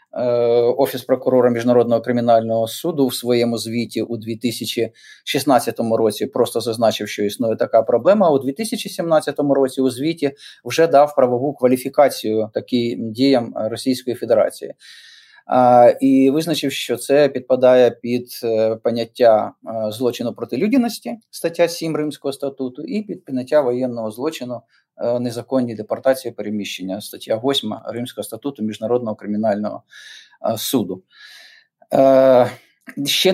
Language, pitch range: Ukrainian, 120-140 Hz